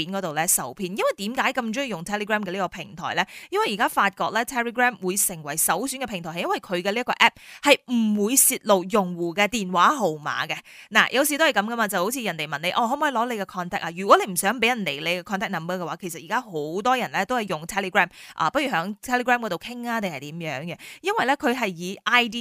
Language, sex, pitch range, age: Chinese, female, 185-250 Hz, 20-39